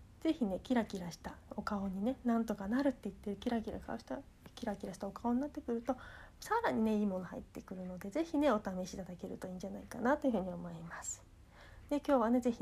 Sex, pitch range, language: female, 205-275 Hz, Japanese